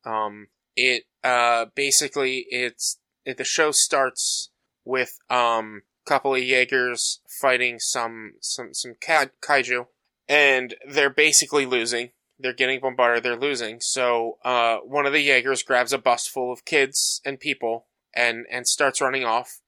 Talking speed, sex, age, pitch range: 145 wpm, male, 20-39, 120-140 Hz